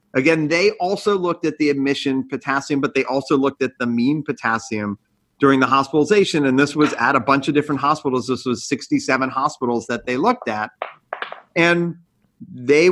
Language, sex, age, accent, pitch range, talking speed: English, male, 40-59, American, 125-155 Hz, 175 wpm